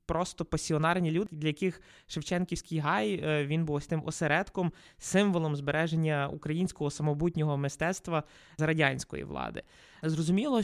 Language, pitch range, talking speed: Ukrainian, 150-180 Hz, 120 wpm